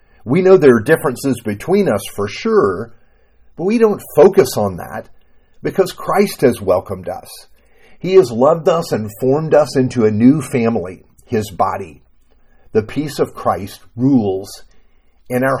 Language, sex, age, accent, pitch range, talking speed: English, male, 50-69, American, 105-155 Hz, 155 wpm